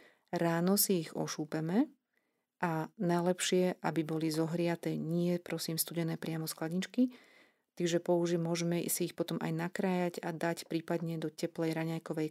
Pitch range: 165-185 Hz